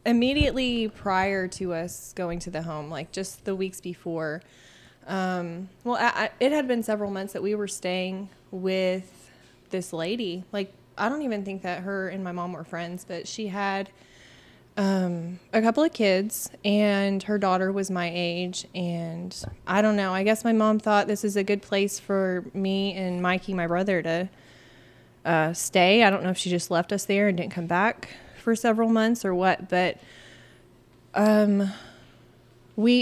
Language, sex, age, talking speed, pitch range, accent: English, female, 20-39, 180 wpm, 175-210 Hz, American